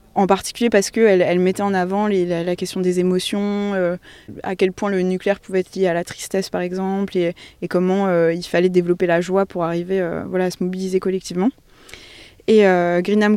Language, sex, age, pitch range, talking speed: French, female, 20-39, 180-205 Hz, 215 wpm